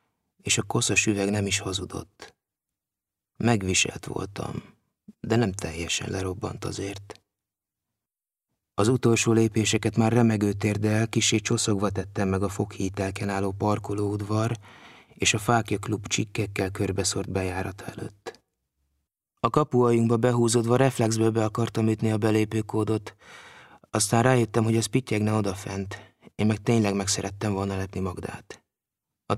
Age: 30-49